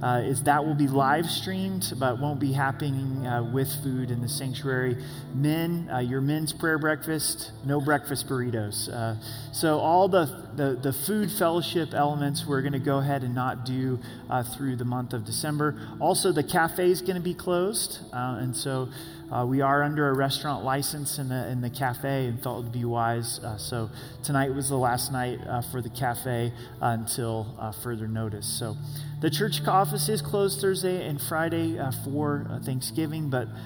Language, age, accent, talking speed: English, 30-49, American, 185 wpm